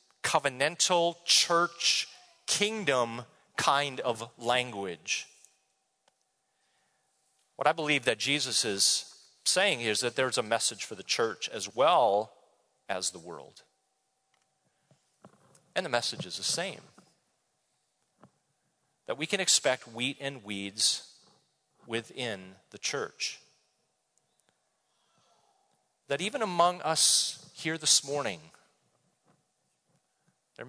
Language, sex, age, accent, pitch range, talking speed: English, male, 40-59, American, 125-170 Hz, 100 wpm